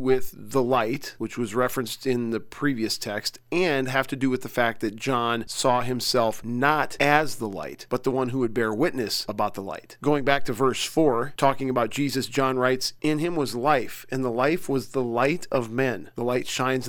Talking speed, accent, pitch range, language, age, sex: 215 wpm, American, 120-145 Hz, English, 40-59, male